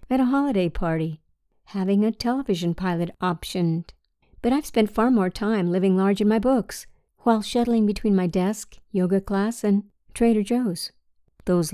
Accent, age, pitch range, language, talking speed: American, 50-69, 175-220 Hz, English, 160 wpm